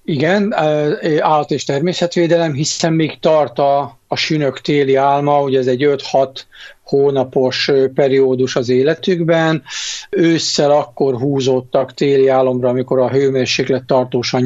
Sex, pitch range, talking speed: male, 125-150 Hz, 120 wpm